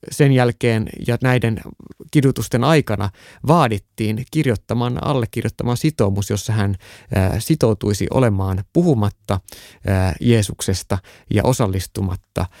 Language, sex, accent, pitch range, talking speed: Finnish, male, native, 95-115 Hz, 85 wpm